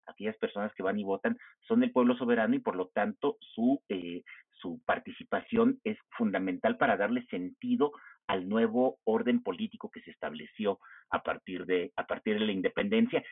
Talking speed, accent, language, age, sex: 170 wpm, Mexican, Spanish, 50-69, male